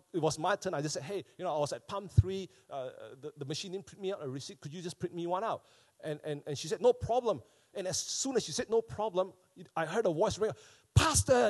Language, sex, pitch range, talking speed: English, male, 150-220 Hz, 275 wpm